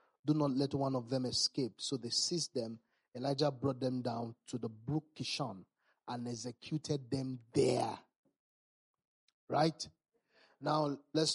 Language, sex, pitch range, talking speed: English, male, 130-150 Hz, 135 wpm